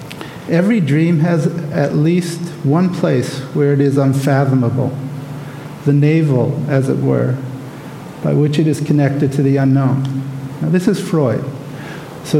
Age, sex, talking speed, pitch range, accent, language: 50-69, male, 140 wpm, 135-150 Hz, American, English